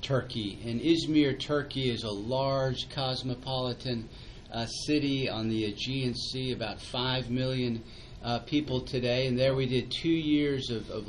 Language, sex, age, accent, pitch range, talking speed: English, male, 40-59, American, 115-140 Hz, 150 wpm